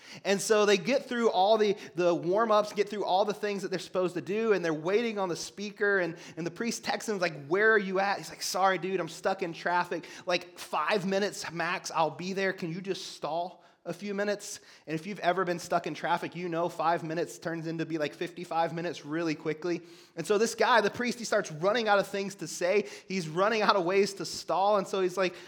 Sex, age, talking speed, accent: male, 30-49, 245 wpm, American